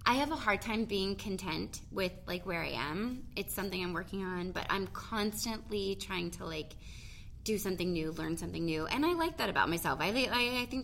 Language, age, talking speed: English, 20-39, 210 wpm